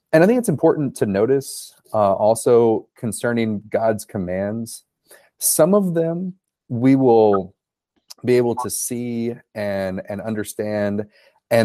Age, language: 30-49, English